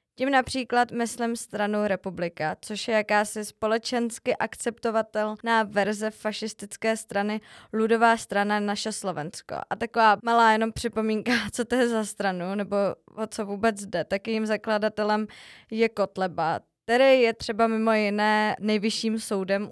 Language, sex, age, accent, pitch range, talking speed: Czech, female, 20-39, native, 200-225 Hz, 130 wpm